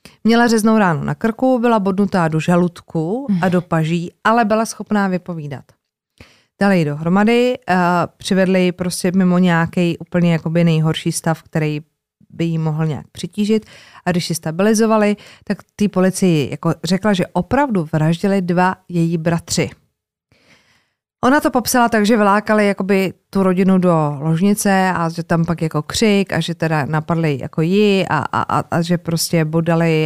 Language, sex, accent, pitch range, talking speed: Czech, female, native, 160-195 Hz, 155 wpm